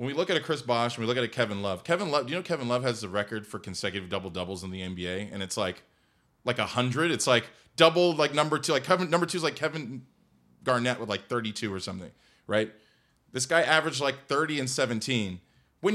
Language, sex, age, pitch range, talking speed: English, male, 20-39, 125-180 Hz, 245 wpm